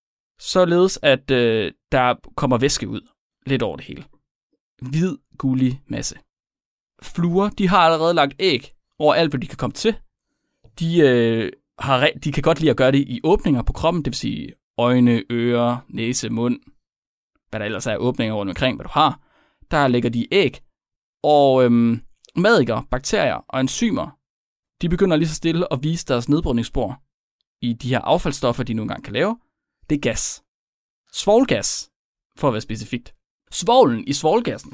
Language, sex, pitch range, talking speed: Danish, male, 125-195 Hz, 170 wpm